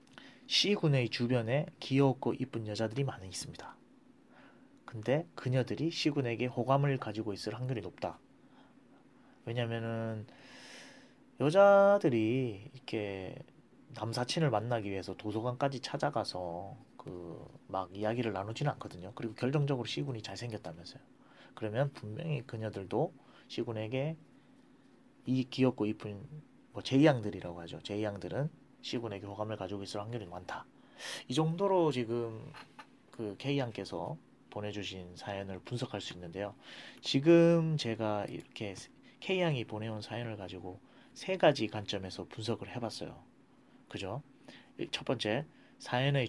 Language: Korean